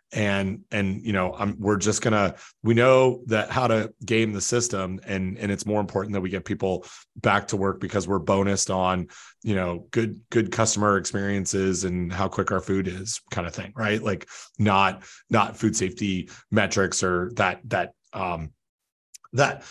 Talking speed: 180 wpm